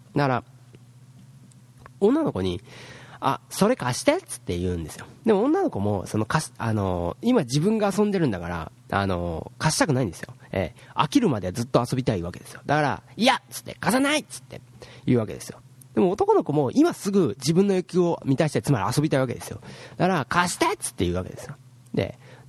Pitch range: 110-160 Hz